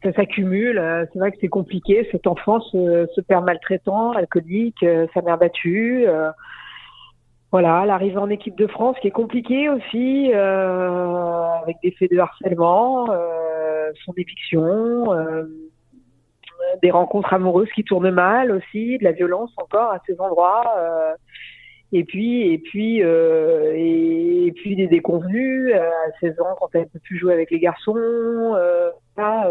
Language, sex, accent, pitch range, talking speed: French, female, French, 165-205 Hz, 160 wpm